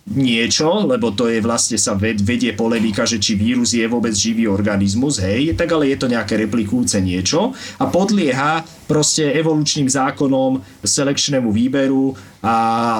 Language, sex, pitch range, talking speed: Slovak, male, 110-155 Hz, 150 wpm